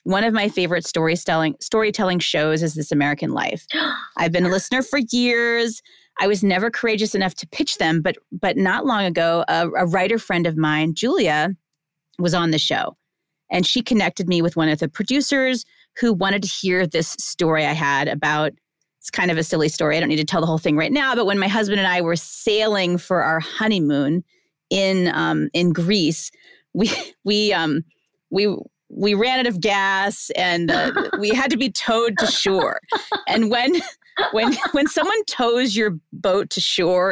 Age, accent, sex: 30-49, American, female